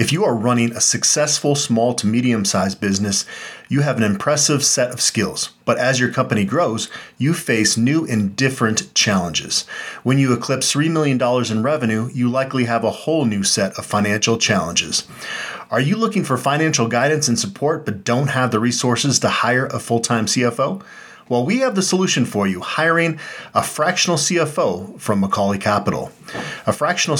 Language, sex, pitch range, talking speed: English, male, 110-140 Hz, 175 wpm